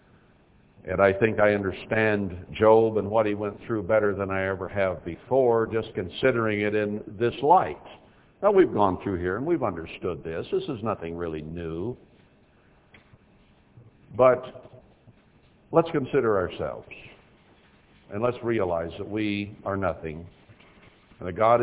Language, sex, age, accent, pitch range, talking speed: English, male, 60-79, American, 110-160 Hz, 140 wpm